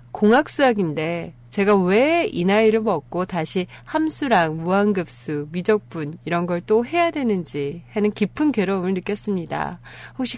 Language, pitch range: Korean, 155-220 Hz